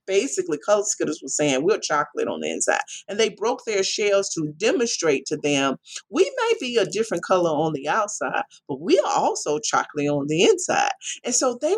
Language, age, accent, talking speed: English, 40-59, American, 200 wpm